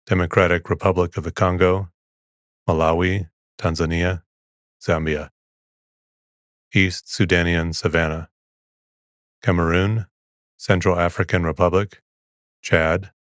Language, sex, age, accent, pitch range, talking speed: English, male, 30-49, American, 75-95 Hz, 70 wpm